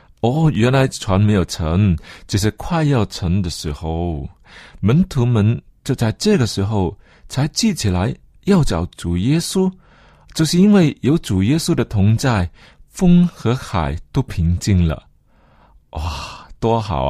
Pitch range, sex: 90-140 Hz, male